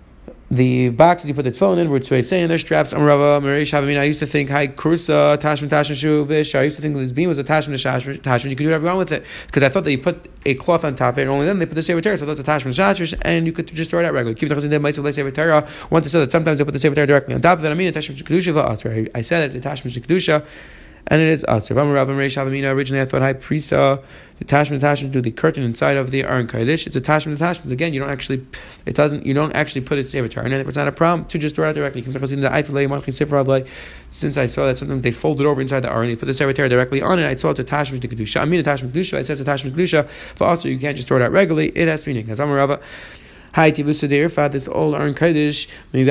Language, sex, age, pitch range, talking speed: English, male, 30-49, 135-155 Hz, 265 wpm